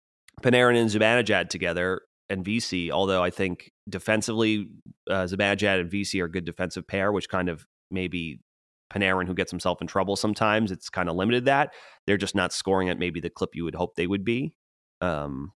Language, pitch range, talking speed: English, 90-110 Hz, 195 wpm